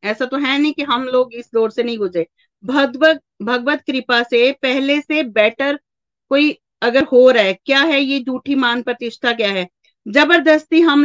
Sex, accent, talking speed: female, native, 185 wpm